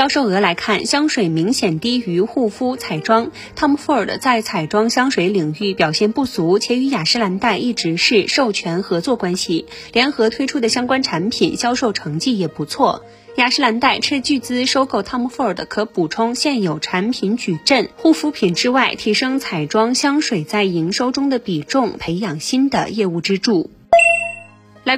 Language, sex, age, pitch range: Chinese, female, 20-39, 190-260 Hz